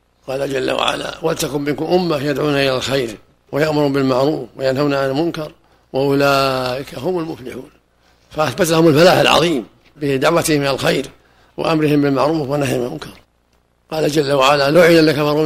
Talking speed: 125 wpm